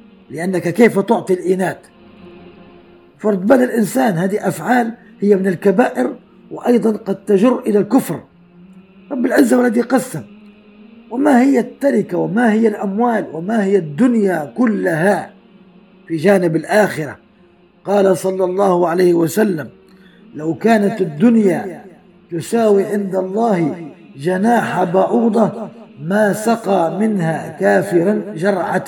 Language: Arabic